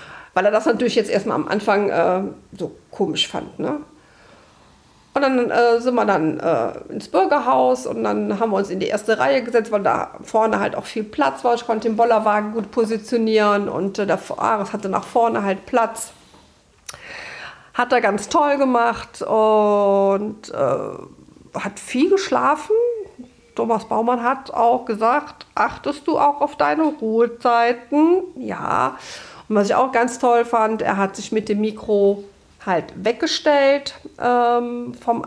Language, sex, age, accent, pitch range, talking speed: German, female, 50-69, German, 210-245 Hz, 160 wpm